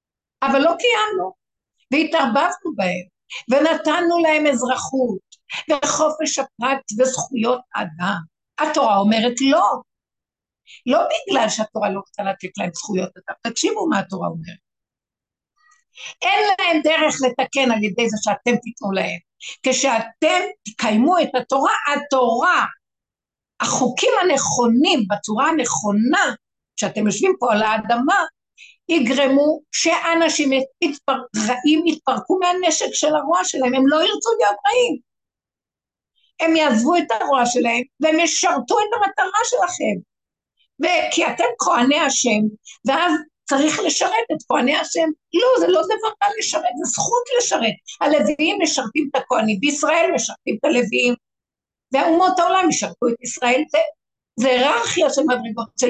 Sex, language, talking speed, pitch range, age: female, Hebrew, 120 wpm, 240-335 Hz, 60-79